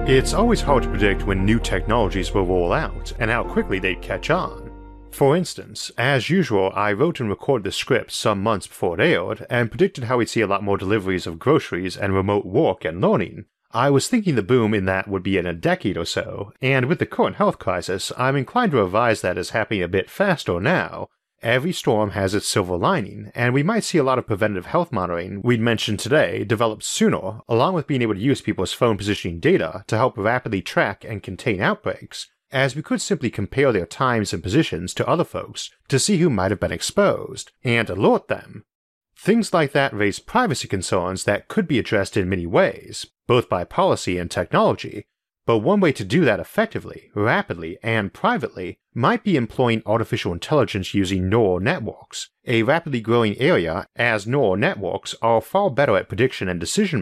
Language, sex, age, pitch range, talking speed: English, male, 30-49, 95-135 Hz, 200 wpm